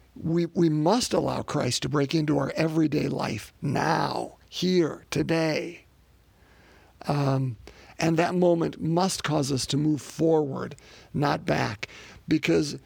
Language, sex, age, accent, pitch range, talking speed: English, male, 50-69, American, 145-190 Hz, 125 wpm